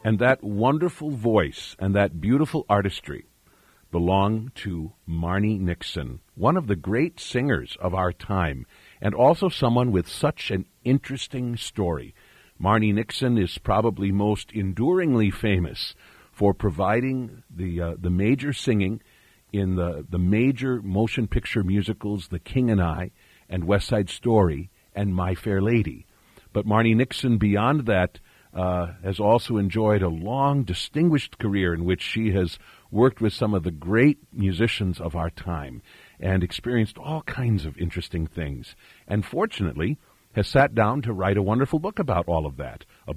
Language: English